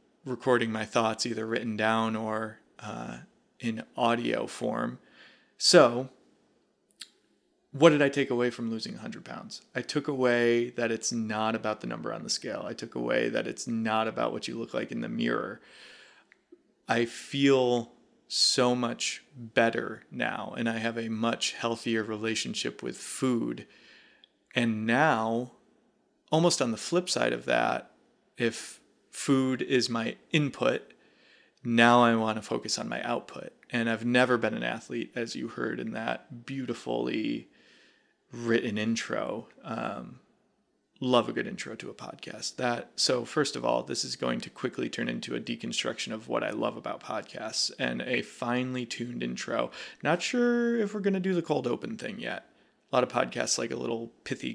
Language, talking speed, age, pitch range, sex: English, 165 wpm, 30-49, 115-130 Hz, male